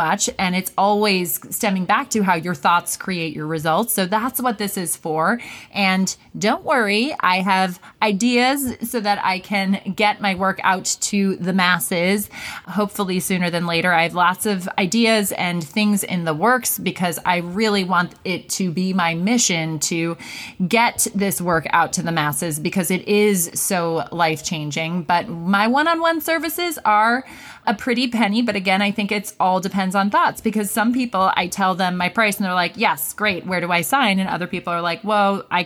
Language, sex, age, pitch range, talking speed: English, female, 20-39, 175-210 Hz, 190 wpm